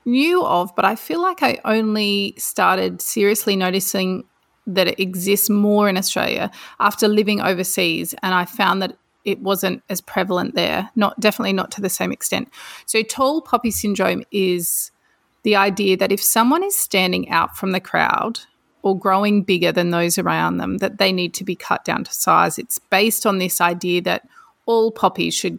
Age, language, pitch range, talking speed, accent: 30-49, English, 185-225 Hz, 180 wpm, Australian